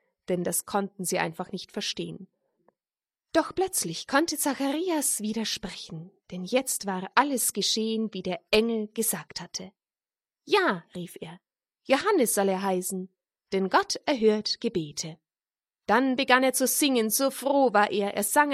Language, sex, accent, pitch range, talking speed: German, female, German, 185-265 Hz, 140 wpm